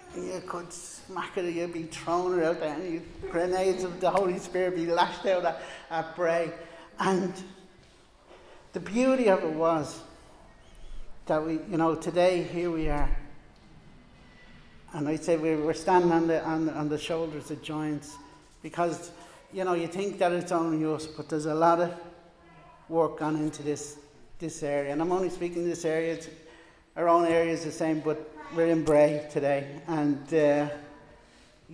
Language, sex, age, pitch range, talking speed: English, male, 60-79, 155-180 Hz, 175 wpm